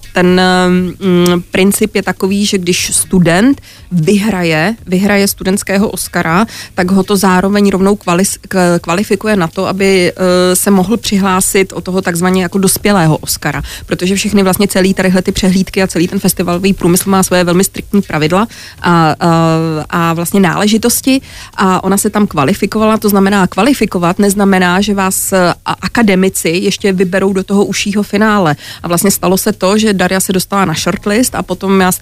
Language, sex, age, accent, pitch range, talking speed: Czech, female, 30-49, native, 180-200 Hz, 160 wpm